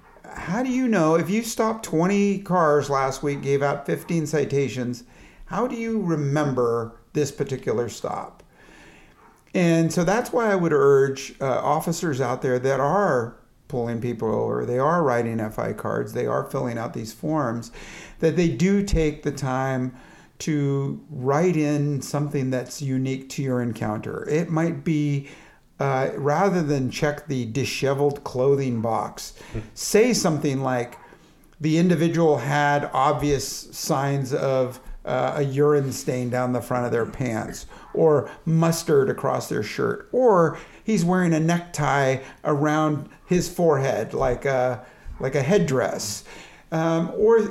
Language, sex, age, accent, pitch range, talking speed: English, male, 50-69, American, 130-170 Hz, 145 wpm